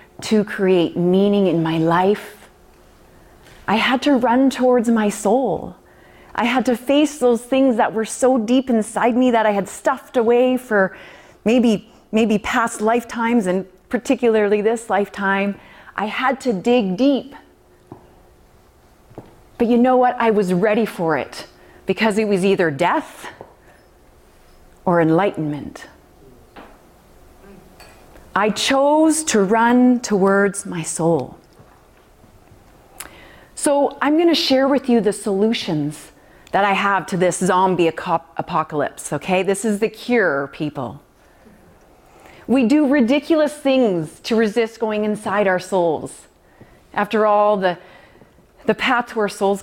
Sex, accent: female, American